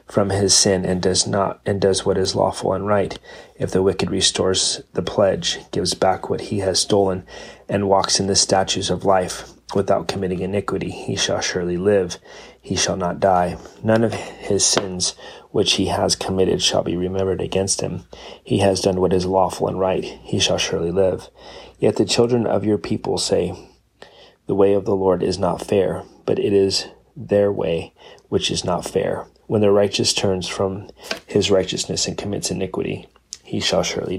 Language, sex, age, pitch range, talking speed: English, male, 30-49, 95-100 Hz, 185 wpm